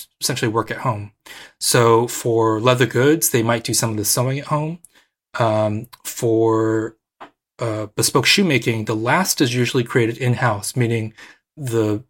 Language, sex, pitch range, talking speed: English, male, 110-130 Hz, 150 wpm